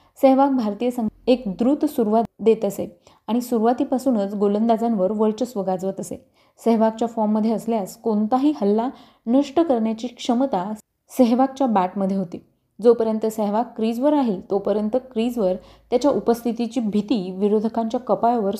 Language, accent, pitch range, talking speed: Marathi, native, 205-255 Hz, 115 wpm